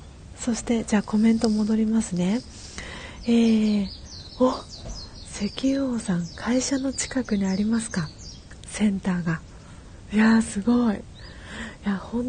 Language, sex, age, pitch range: Japanese, female, 40-59, 175-215 Hz